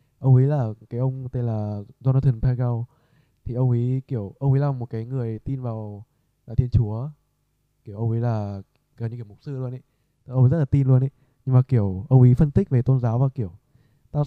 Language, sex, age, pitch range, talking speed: Vietnamese, male, 20-39, 110-135 Hz, 230 wpm